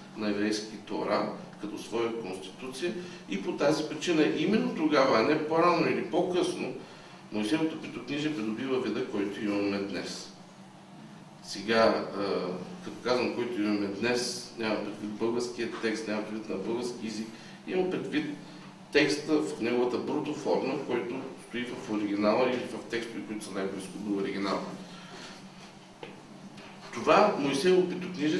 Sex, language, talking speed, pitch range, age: male, Bulgarian, 125 wpm, 105-155 Hz, 50-69